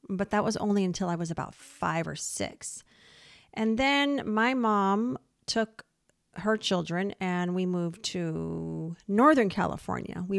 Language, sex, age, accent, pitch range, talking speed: English, female, 40-59, American, 170-210 Hz, 145 wpm